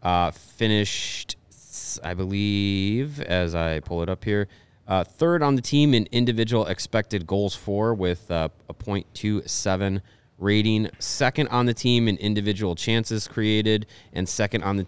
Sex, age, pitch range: male, 30-49, 90-115 Hz